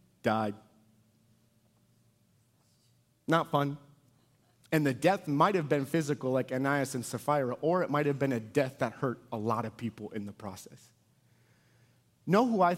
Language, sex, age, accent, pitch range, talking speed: English, male, 30-49, American, 125-160 Hz, 155 wpm